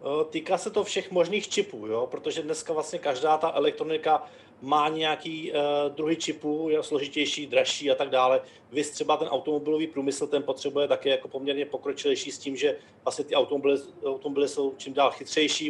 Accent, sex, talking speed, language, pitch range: native, male, 170 wpm, Czech, 140-160 Hz